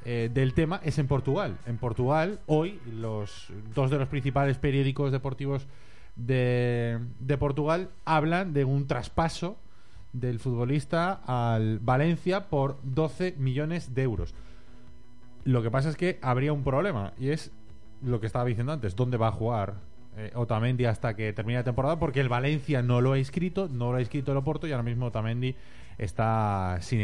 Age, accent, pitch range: 30-49, Spanish, 110-140 Hz